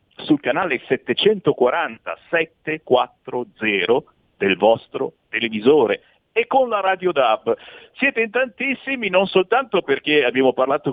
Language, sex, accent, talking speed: Italian, male, native, 105 wpm